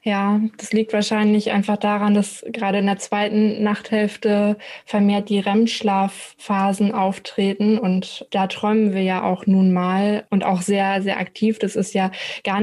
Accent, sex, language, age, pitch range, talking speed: German, female, German, 20-39, 195-220 Hz, 155 wpm